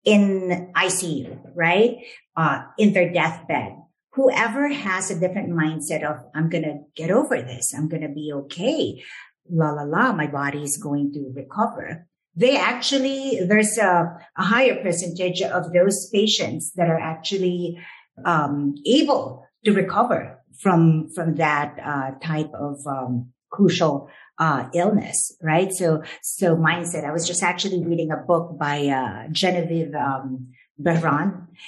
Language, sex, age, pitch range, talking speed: English, female, 50-69, 150-185 Hz, 145 wpm